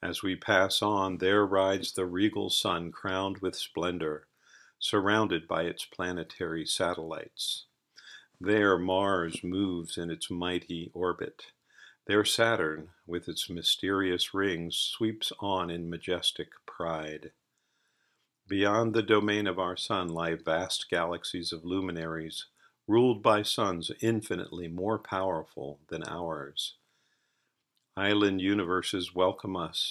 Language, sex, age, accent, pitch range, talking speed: English, male, 50-69, American, 85-100 Hz, 115 wpm